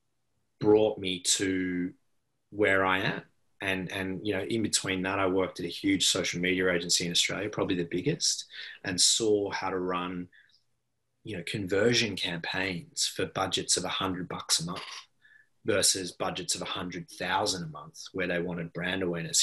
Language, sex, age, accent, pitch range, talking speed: English, male, 20-39, Australian, 90-105 Hz, 175 wpm